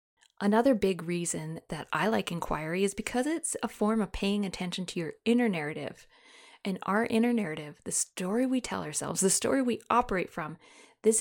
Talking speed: 180 wpm